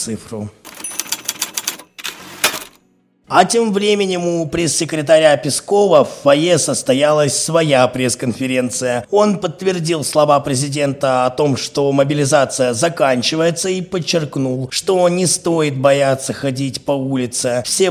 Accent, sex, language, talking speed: native, male, Russian, 100 wpm